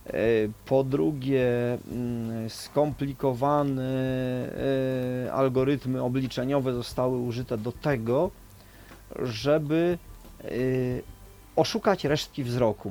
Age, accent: 30-49, native